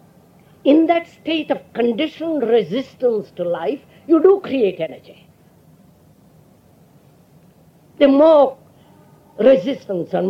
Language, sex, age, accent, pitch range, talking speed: English, female, 50-69, Indian, 235-320 Hz, 95 wpm